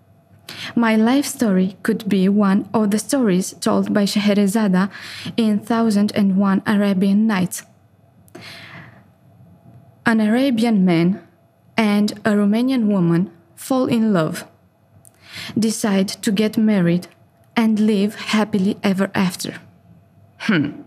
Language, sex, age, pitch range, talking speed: Romanian, female, 20-39, 195-235 Hz, 110 wpm